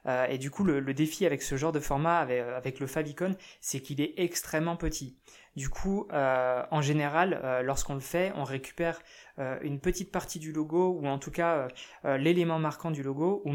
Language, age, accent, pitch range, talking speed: French, 20-39, French, 135-165 Hz, 215 wpm